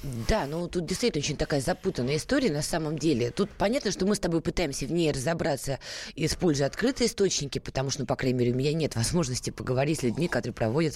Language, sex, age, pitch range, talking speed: Russian, female, 20-39, 140-200 Hz, 215 wpm